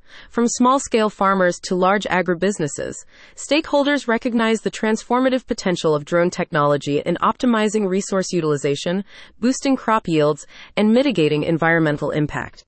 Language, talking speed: English, 120 wpm